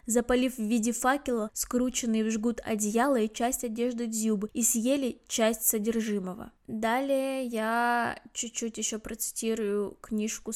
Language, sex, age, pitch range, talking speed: Russian, female, 20-39, 225-255 Hz, 125 wpm